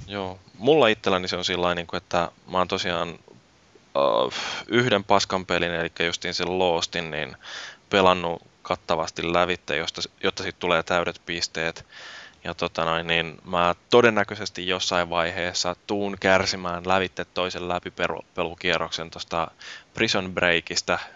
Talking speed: 130 wpm